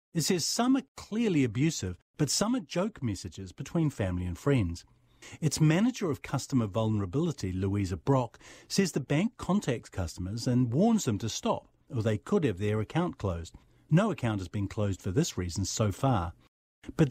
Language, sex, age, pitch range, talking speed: English, male, 50-69, 120-175 Hz, 175 wpm